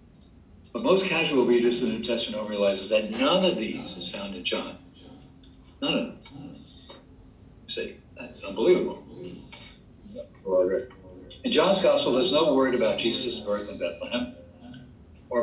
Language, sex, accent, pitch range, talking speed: English, male, American, 90-125 Hz, 150 wpm